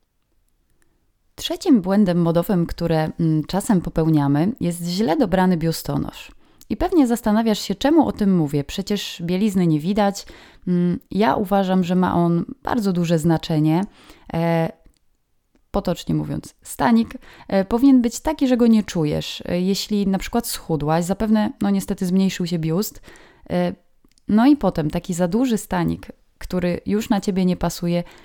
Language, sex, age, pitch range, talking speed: Polish, female, 20-39, 170-220 Hz, 130 wpm